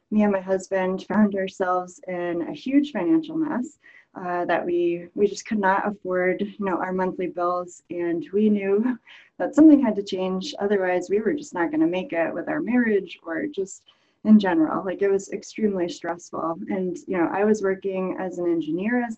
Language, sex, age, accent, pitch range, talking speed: English, female, 20-39, American, 180-215 Hz, 190 wpm